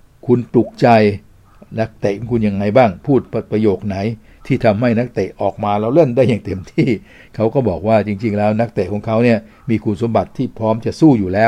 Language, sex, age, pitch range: Thai, male, 60-79, 100-120 Hz